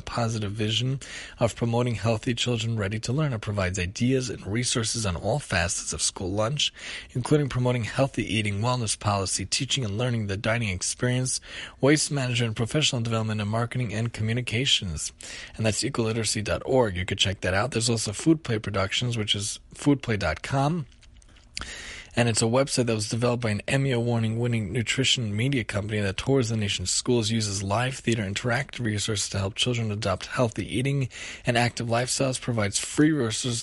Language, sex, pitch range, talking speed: English, male, 105-125 Hz, 160 wpm